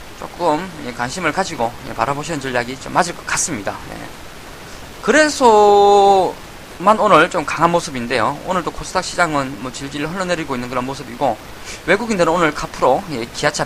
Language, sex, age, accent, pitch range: Korean, male, 20-39, native, 125-170 Hz